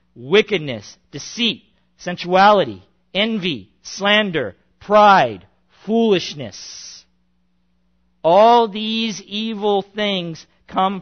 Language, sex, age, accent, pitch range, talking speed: English, male, 50-69, American, 150-205 Hz, 65 wpm